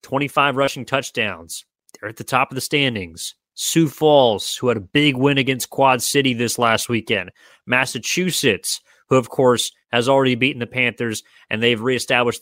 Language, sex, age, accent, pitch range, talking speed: English, male, 30-49, American, 120-140 Hz, 170 wpm